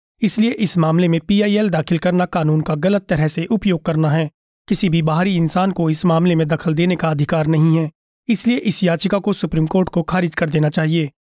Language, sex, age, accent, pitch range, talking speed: Hindi, male, 30-49, native, 165-200 Hz, 215 wpm